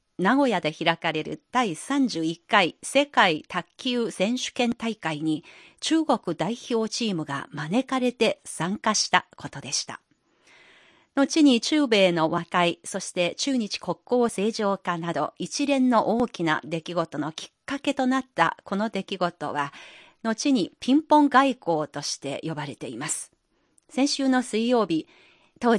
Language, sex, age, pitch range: Japanese, female, 40-59, 160-255 Hz